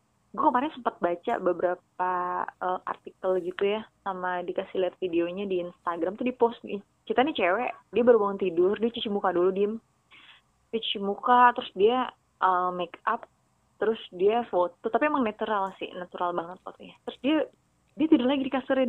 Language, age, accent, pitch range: Indonesian, 20-39, native, 190-255 Hz